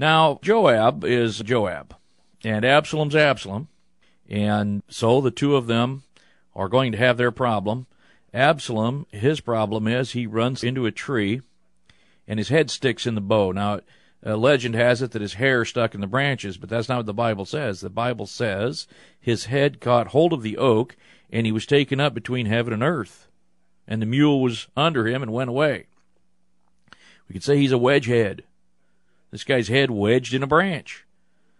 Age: 50-69